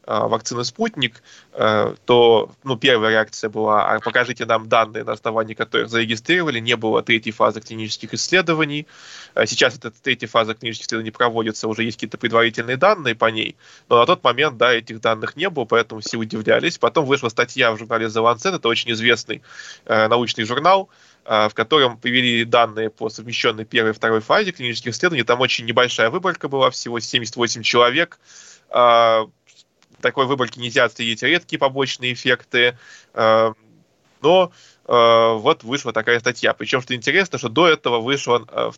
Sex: male